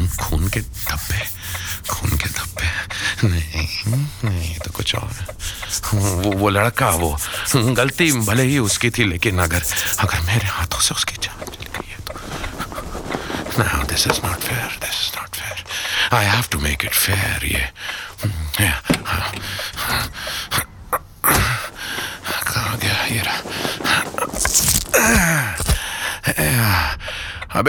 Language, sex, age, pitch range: Hindi, male, 50-69, 85-115 Hz